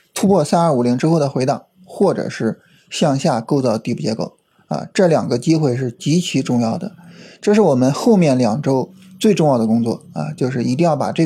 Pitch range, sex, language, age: 130-180 Hz, male, Chinese, 20-39